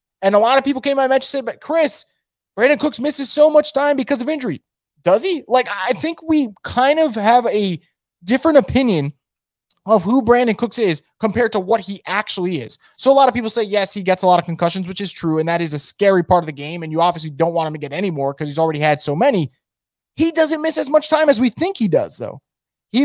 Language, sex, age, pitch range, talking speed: English, male, 20-39, 175-275 Hz, 255 wpm